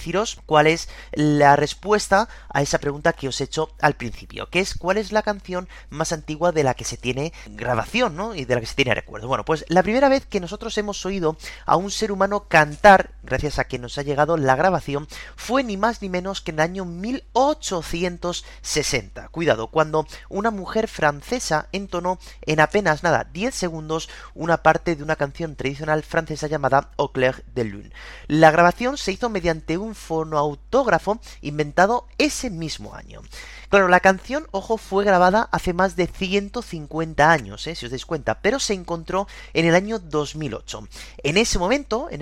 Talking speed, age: 185 wpm, 30-49